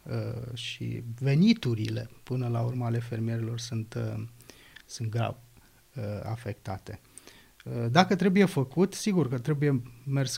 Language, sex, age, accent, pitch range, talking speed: Romanian, male, 30-49, native, 115-135 Hz, 105 wpm